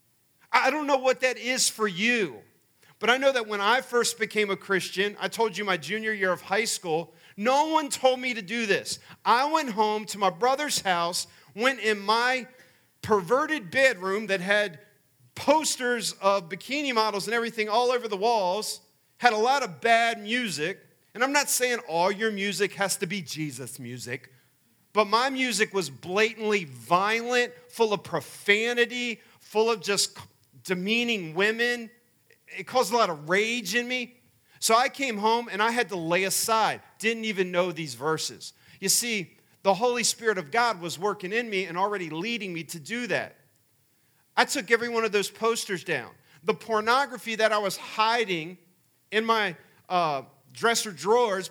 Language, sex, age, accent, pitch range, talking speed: English, male, 40-59, American, 175-235 Hz, 175 wpm